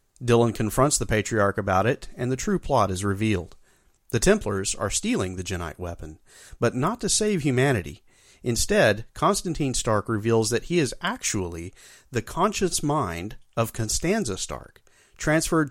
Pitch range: 100-135 Hz